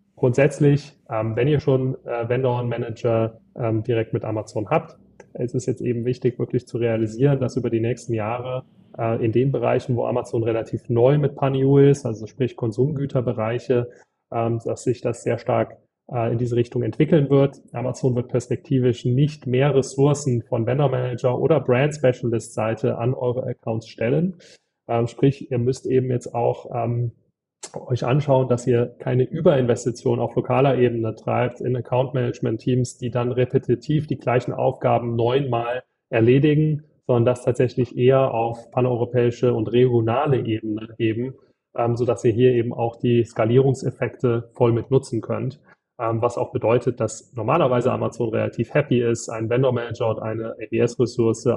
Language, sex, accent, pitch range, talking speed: German, male, German, 115-130 Hz, 150 wpm